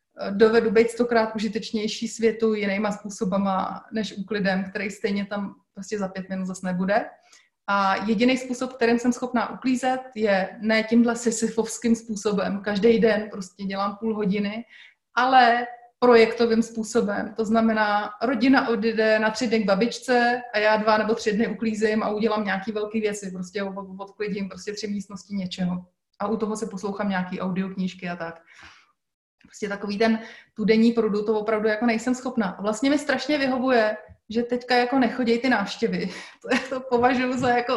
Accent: native